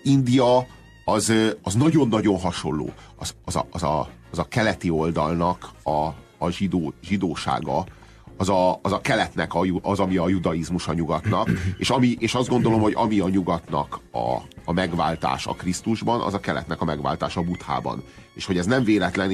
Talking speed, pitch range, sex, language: 175 wpm, 85-110 Hz, male, Hungarian